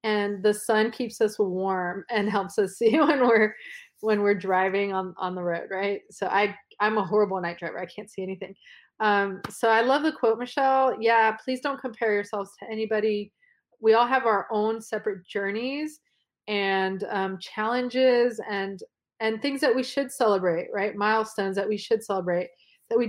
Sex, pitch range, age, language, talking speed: female, 200-245 Hz, 30-49, English, 180 wpm